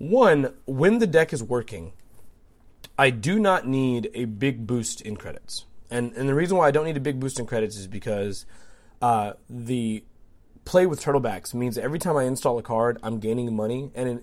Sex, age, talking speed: male, 30-49, 200 wpm